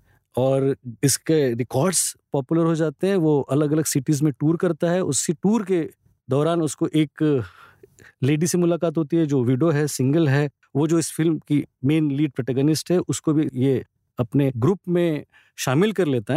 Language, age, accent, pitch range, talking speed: Hindi, 40-59, native, 130-185 Hz, 180 wpm